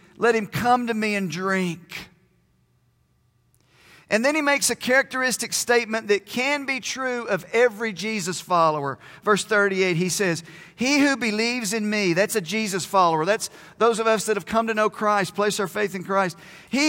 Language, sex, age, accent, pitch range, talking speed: English, male, 40-59, American, 180-230 Hz, 180 wpm